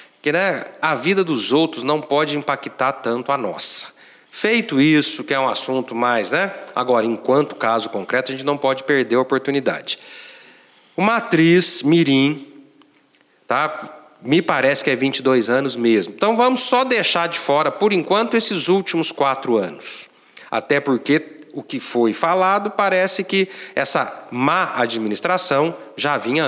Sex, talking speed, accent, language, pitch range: male, 150 wpm, Brazilian, Portuguese, 135-180 Hz